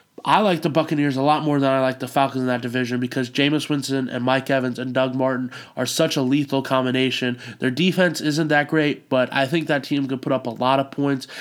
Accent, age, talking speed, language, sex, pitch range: American, 20-39, 240 wpm, English, male, 130-150 Hz